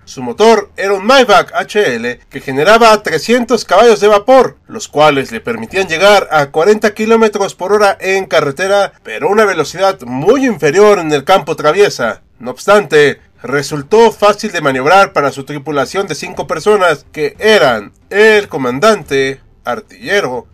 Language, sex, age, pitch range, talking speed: Spanish, male, 40-59, 145-215 Hz, 145 wpm